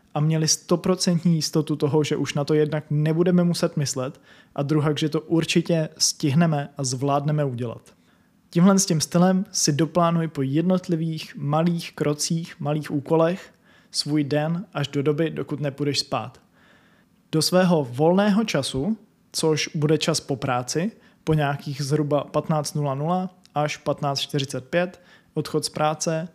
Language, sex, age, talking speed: Czech, male, 20-39, 135 wpm